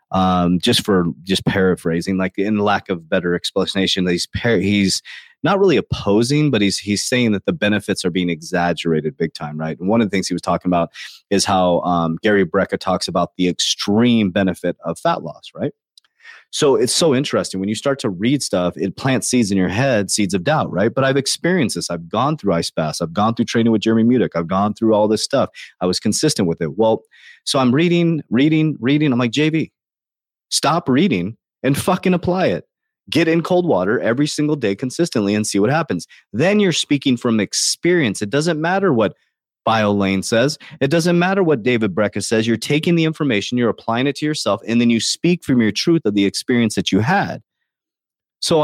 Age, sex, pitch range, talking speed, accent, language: 30-49, male, 95-140 Hz, 210 wpm, American, English